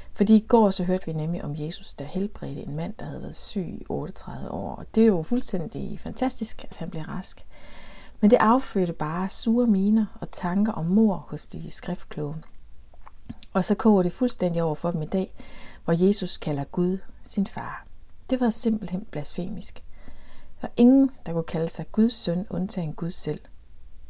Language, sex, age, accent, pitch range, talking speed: Danish, female, 60-79, native, 155-220 Hz, 185 wpm